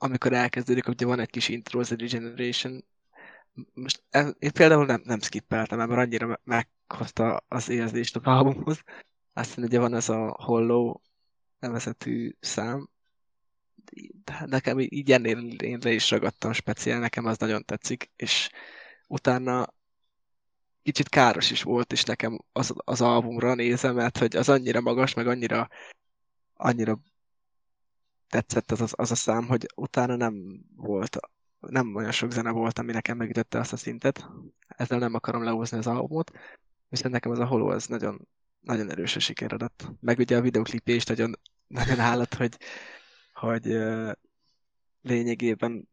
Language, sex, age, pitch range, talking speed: Hungarian, male, 20-39, 115-125 Hz, 145 wpm